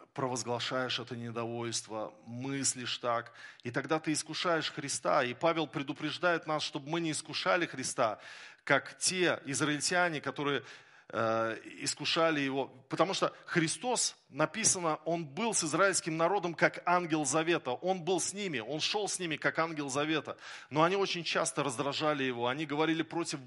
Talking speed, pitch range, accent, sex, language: 150 wpm, 140-170 Hz, native, male, Russian